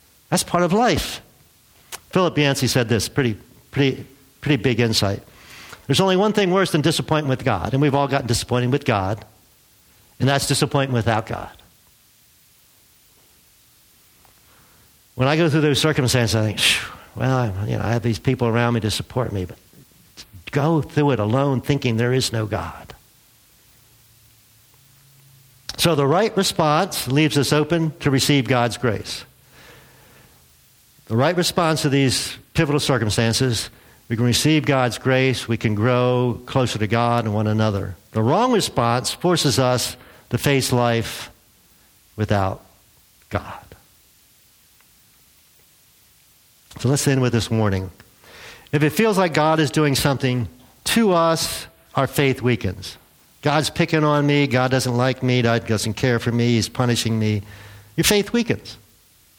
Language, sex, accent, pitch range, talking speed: English, male, American, 115-145 Hz, 145 wpm